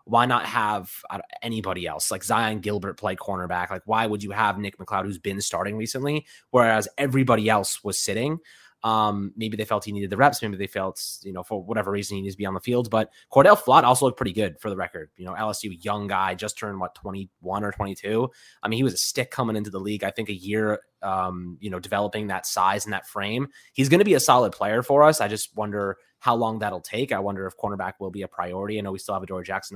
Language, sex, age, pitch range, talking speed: English, male, 20-39, 95-115 Hz, 250 wpm